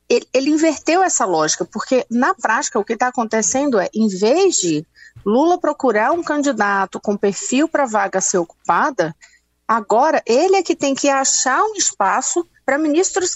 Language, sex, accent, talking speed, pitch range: Portuguese, female, Brazilian, 165 wpm, 195-285 Hz